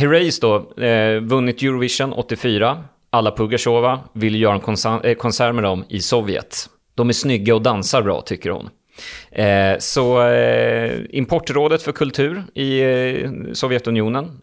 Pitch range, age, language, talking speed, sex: 110-135 Hz, 30-49, English, 145 wpm, male